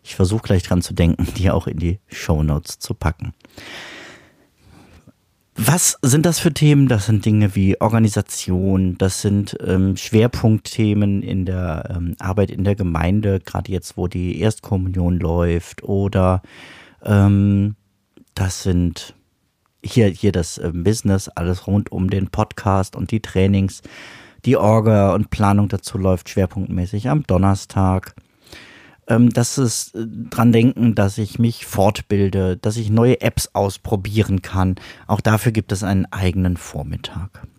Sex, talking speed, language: male, 140 wpm, German